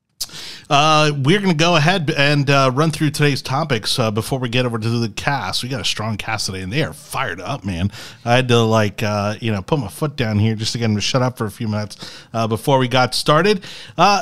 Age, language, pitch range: 30-49, English, 115-160 Hz